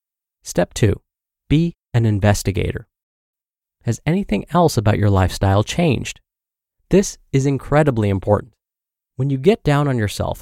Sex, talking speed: male, 125 wpm